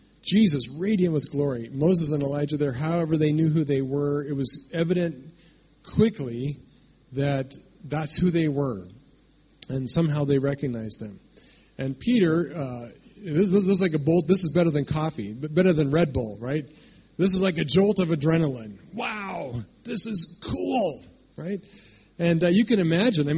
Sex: male